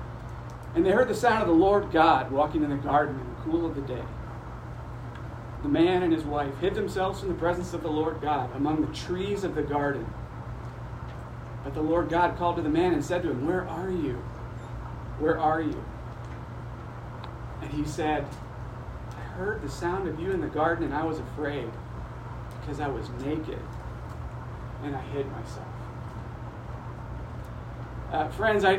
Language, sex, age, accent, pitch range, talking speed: English, male, 40-59, American, 115-155 Hz, 175 wpm